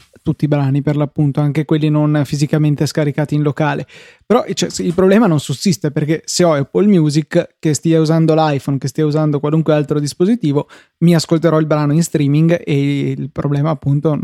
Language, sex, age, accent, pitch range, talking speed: Italian, male, 20-39, native, 145-165 Hz, 175 wpm